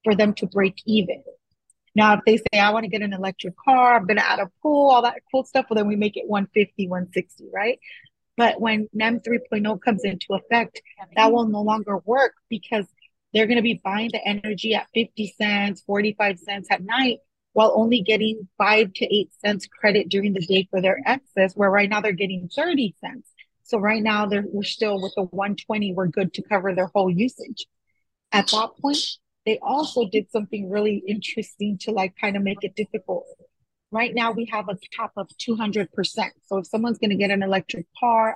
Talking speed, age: 200 wpm, 30-49